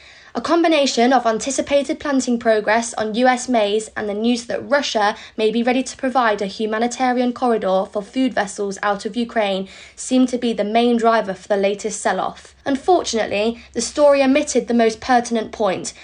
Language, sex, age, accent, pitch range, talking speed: English, female, 20-39, British, 215-255 Hz, 170 wpm